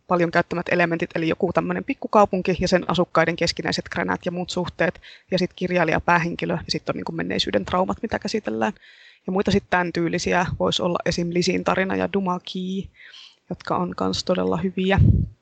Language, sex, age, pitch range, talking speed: Finnish, female, 20-39, 170-195 Hz, 165 wpm